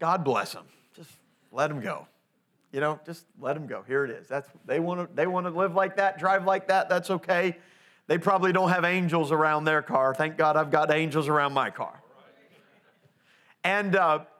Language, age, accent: English, 40-59, American